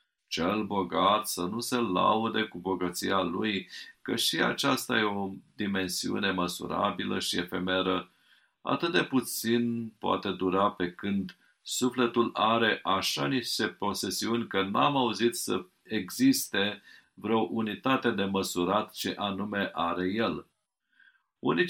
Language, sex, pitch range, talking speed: Romanian, male, 95-125 Hz, 120 wpm